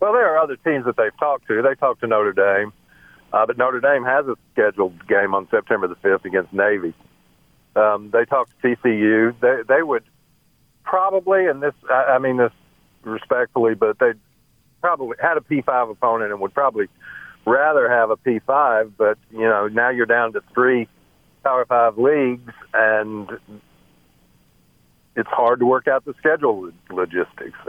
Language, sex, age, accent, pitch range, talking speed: English, male, 60-79, American, 105-125 Hz, 170 wpm